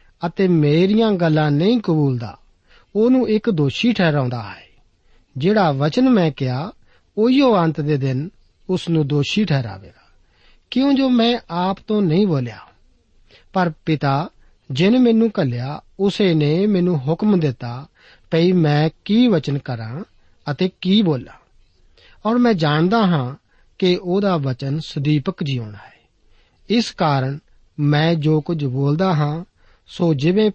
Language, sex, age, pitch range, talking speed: Punjabi, male, 50-69, 140-195 Hz, 90 wpm